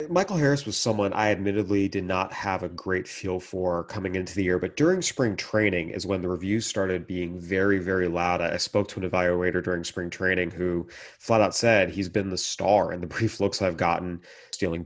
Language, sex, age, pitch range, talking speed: English, male, 30-49, 90-110 Hz, 215 wpm